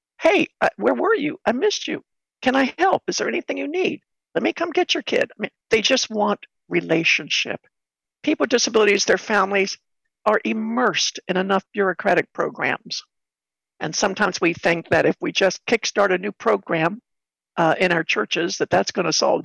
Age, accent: 60-79, American